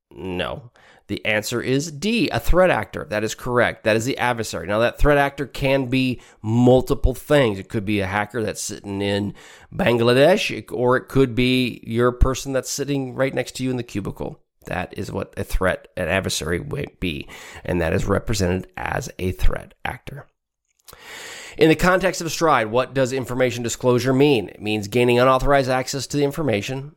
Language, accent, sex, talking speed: English, American, male, 180 wpm